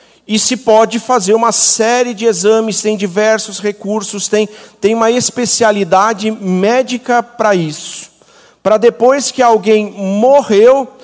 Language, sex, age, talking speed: Portuguese, male, 50-69, 125 wpm